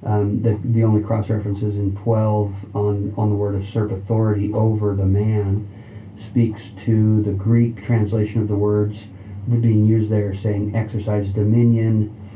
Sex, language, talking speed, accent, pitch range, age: male, English, 145 wpm, American, 105-115 Hz, 50-69